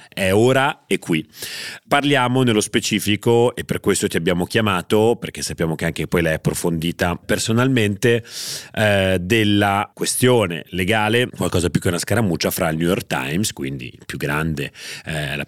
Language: Italian